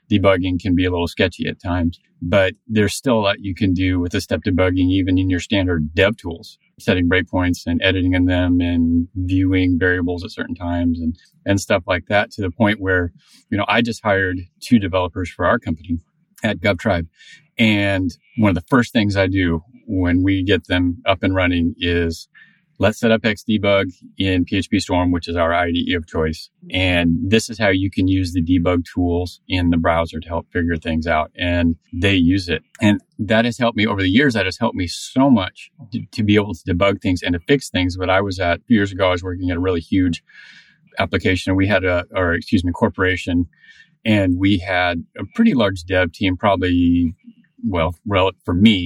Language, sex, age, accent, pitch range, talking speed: English, male, 30-49, American, 85-100 Hz, 210 wpm